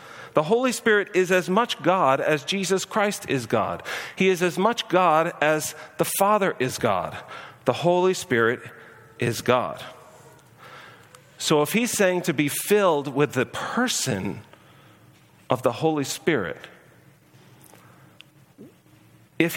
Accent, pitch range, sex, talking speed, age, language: American, 130-185 Hz, male, 130 wpm, 40-59, English